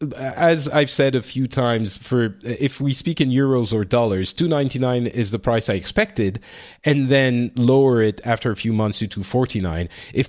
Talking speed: 180 wpm